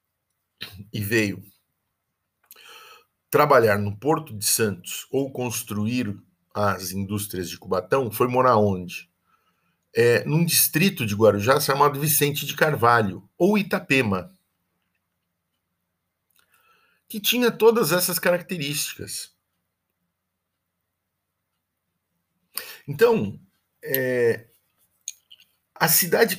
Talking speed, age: 75 wpm, 50-69